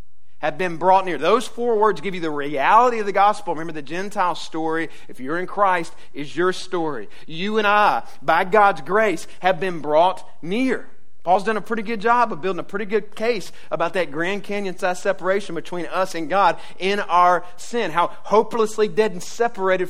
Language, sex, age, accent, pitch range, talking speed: English, male, 40-59, American, 180-235 Hz, 195 wpm